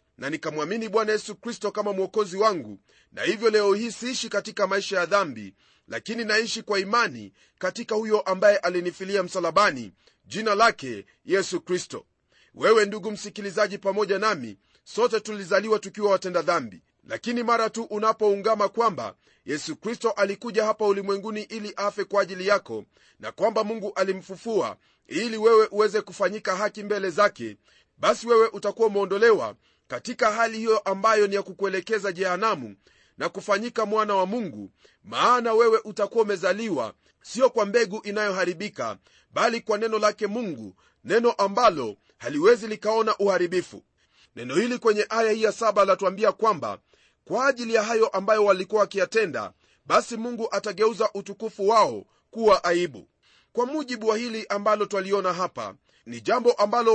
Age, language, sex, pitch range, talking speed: 40-59, Swahili, male, 195-225 Hz, 140 wpm